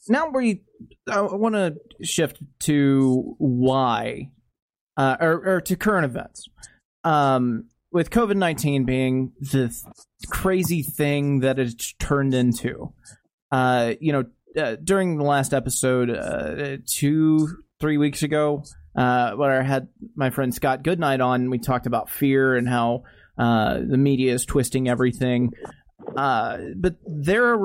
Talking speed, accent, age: 135 wpm, American, 30-49